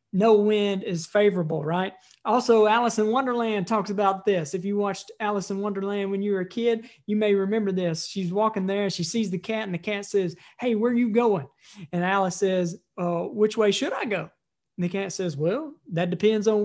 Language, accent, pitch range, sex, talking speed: English, American, 175-210 Hz, male, 220 wpm